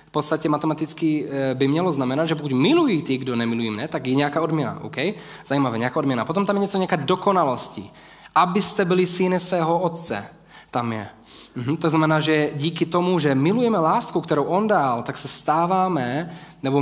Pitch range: 130-170 Hz